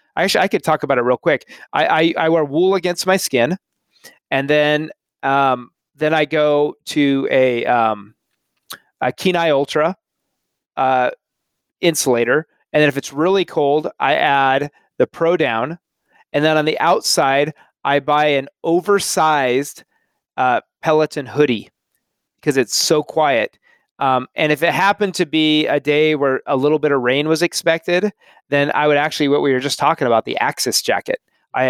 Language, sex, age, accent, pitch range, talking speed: English, male, 30-49, American, 145-180 Hz, 165 wpm